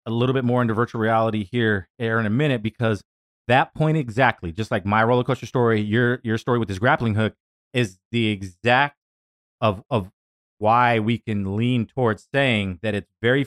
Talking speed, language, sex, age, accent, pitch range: 190 wpm, English, male, 30-49, American, 100-130 Hz